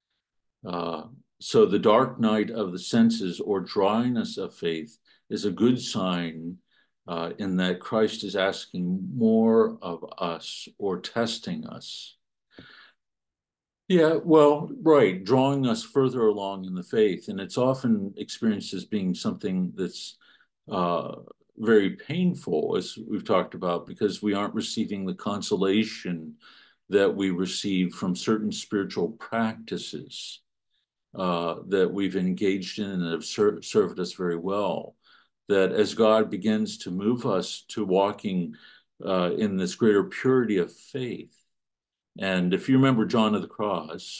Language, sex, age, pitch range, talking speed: English, male, 50-69, 95-130 Hz, 135 wpm